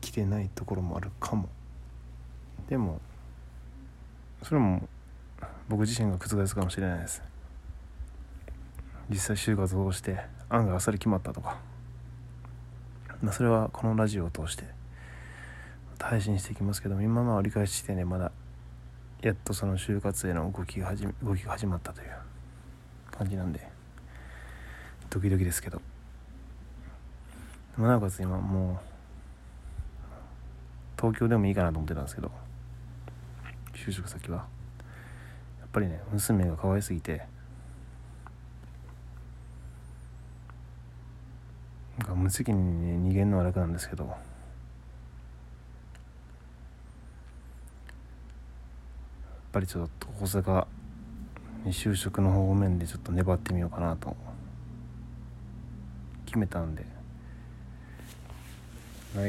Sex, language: male, Japanese